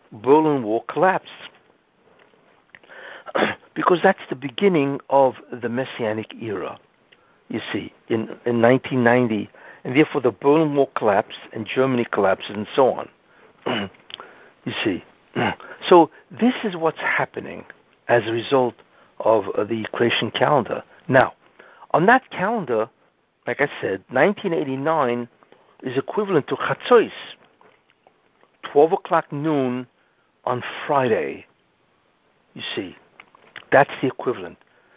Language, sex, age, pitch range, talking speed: English, male, 60-79, 125-170 Hz, 110 wpm